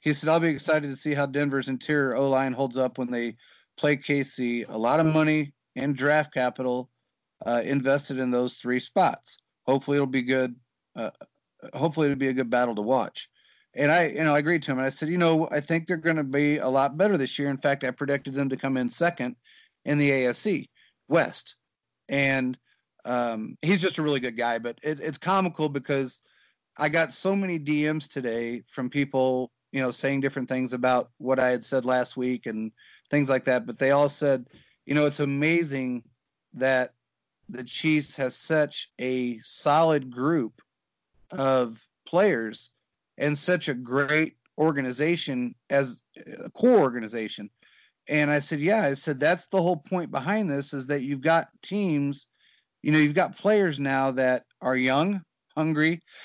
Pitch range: 130-155 Hz